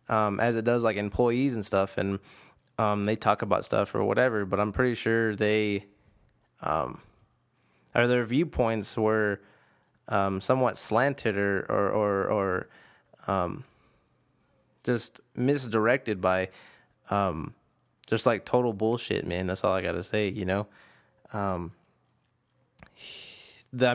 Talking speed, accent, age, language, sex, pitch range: 130 wpm, American, 20-39, English, male, 110-140 Hz